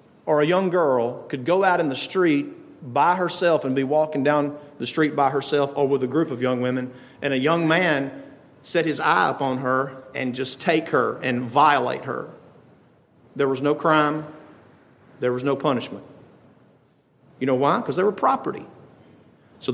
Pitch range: 140-185 Hz